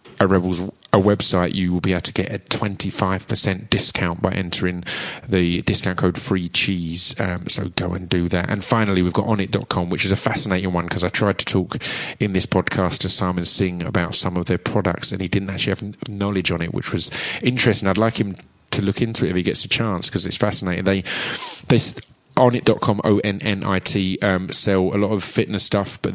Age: 20-39